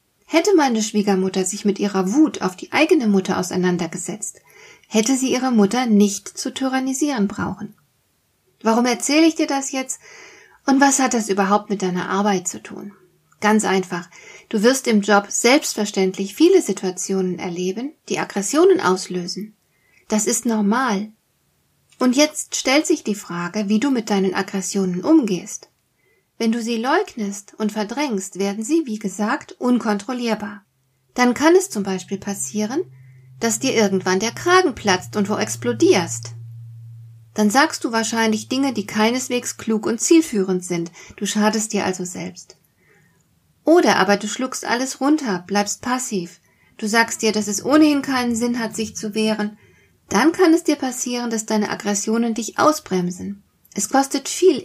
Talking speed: 155 wpm